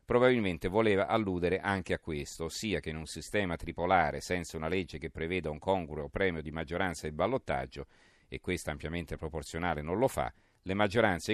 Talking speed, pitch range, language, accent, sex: 180 wpm, 80-100 Hz, Italian, native, male